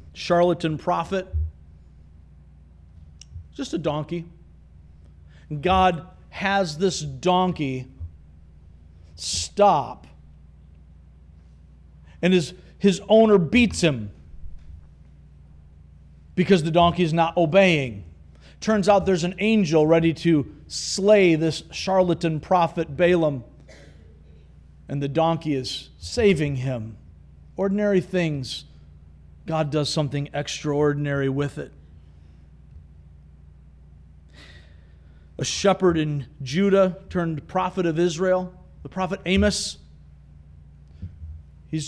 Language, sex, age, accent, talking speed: English, male, 40-59, American, 85 wpm